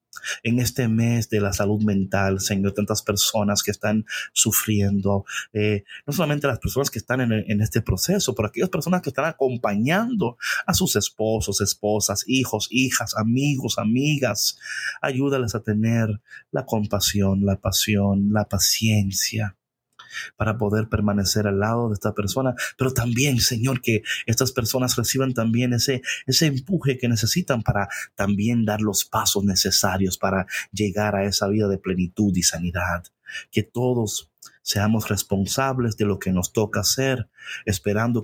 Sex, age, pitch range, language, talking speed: male, 30-49, 100-125 Hz, Spanish, 150 wpm